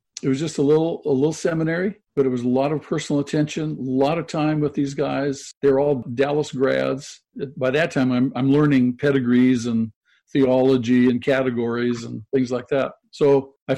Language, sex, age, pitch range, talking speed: English, male, 50-69, 130-155 Hz, 190 wpm